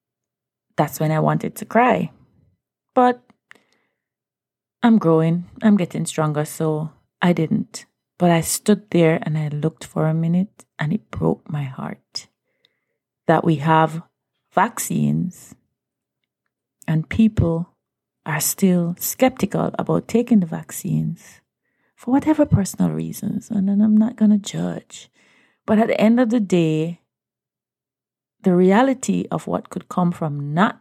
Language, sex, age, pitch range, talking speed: English, female, 30-49, 160-210 Hz, 135 wpm